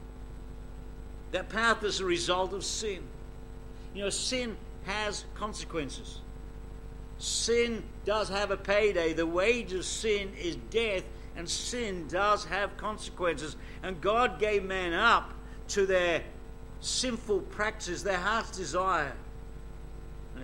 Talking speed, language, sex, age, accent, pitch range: 120 wpm, English, male, 50-69, British, 145-205 Hz